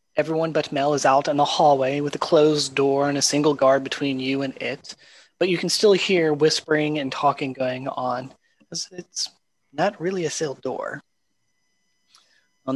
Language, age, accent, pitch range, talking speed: English, 30-49, American, 140-165 Hz, 175 wpm